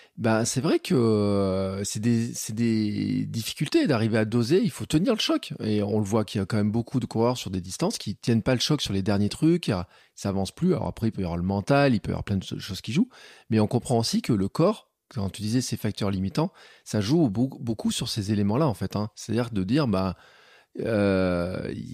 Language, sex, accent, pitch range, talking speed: French, male, French, 105-130 Hz, 240 wpm